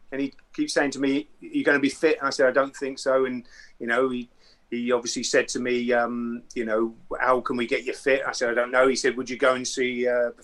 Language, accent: English, British